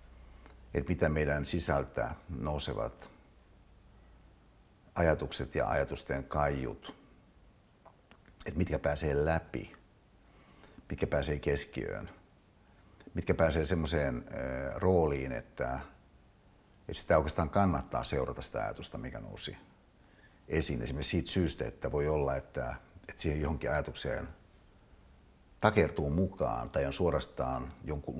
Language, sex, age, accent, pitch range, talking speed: Finnish, male, 60-79, native, 70-95 Hz, 100 wpm